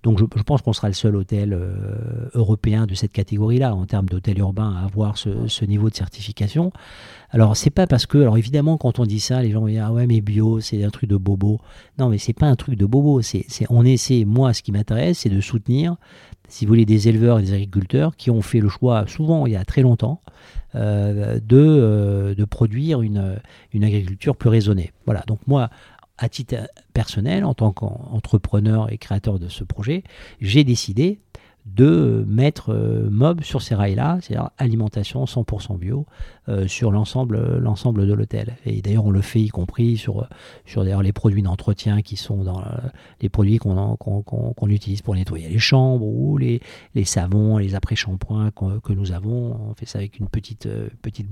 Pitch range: 105-125 Hz